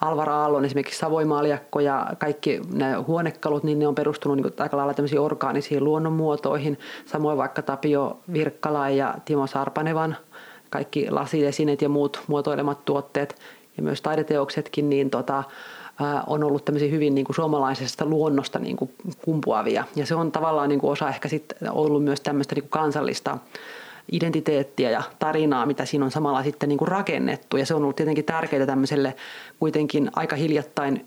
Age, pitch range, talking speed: 30-49, 145-155 Hz, 160 wpm